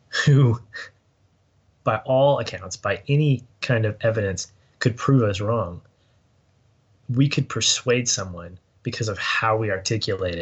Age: 20-39